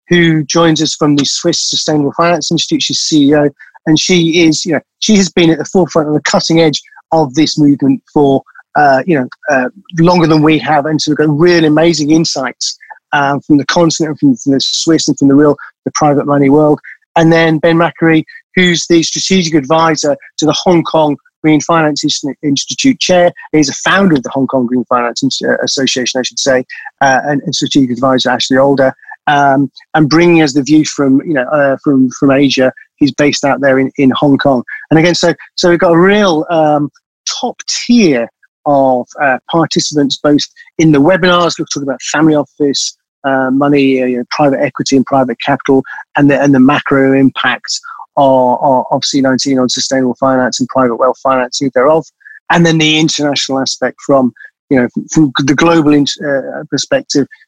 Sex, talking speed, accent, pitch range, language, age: male, 195 wpm, British, 135-160 Hz, English, 30-49